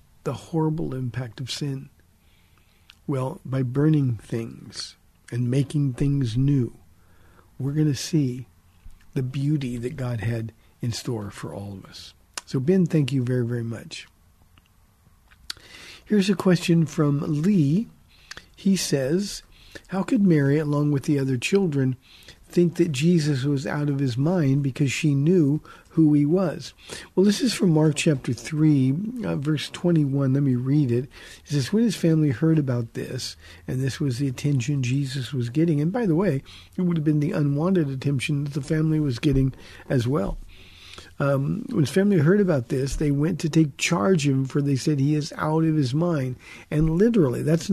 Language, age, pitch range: English, 50-69, 125-160 Hz